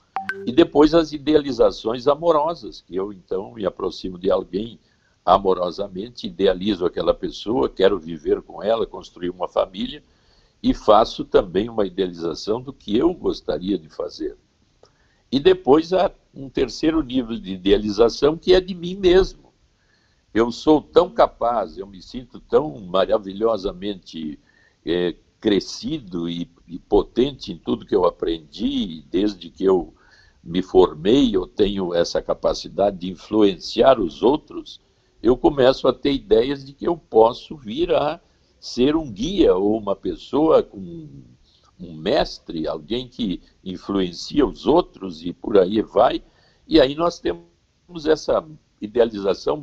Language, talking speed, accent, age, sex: Portuguese, 140 wpm, Brazilian, 60-79, male